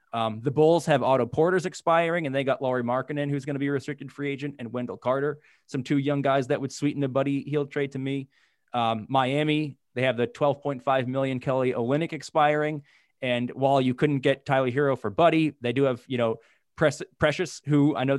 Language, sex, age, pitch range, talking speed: English, male, 20-39, 130-155 Hz, 215 wpm